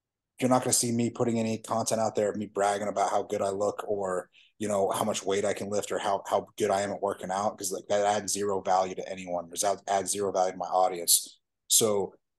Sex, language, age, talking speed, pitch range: male, English, 30-49, 250 wpm, 100-115 Hz